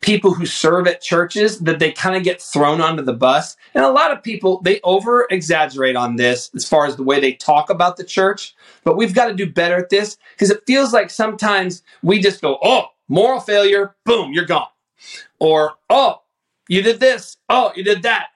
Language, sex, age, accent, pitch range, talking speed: English, male, 40-59, American, 170-215 Hz, 210 wpm